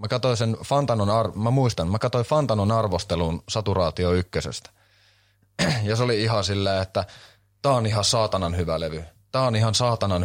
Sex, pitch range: male, 95-110 Hz